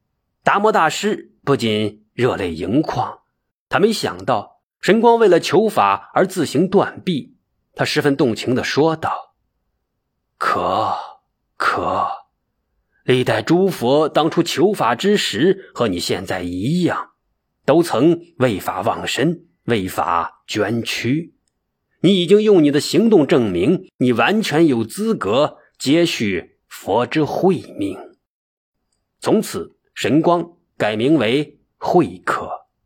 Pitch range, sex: 125-185 Hz, male